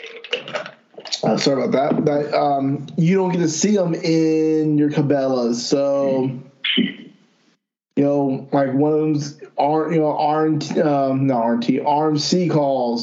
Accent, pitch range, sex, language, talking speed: American, 140-170 Hz, male, English, 130 wpm